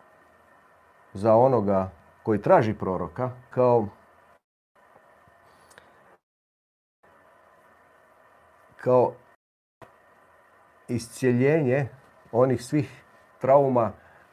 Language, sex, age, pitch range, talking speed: Croatian, male, 40-59, 105-125 Hz, 45 wpm